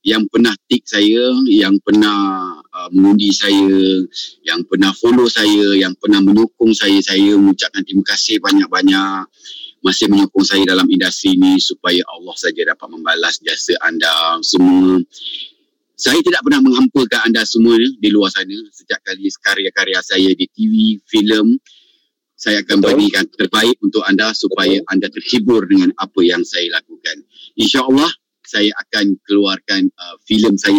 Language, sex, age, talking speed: Malay, male, 30-49, 145 wpm